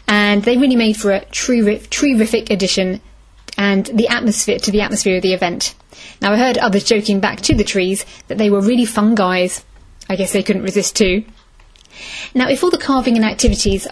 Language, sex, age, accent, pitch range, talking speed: English, female, 30-49, British, 195-235 Hz, 205 wpm